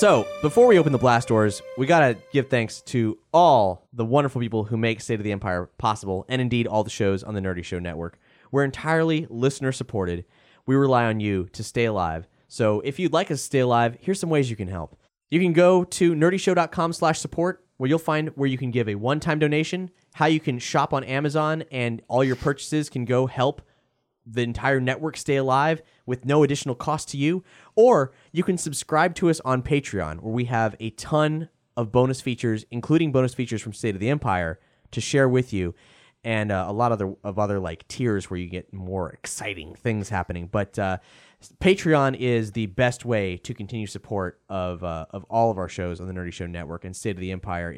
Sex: male